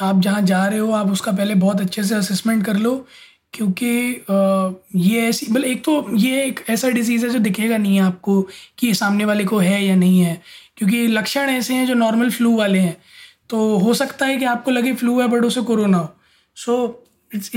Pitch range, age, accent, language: 205-240 Hz, 20-39, native, Hindi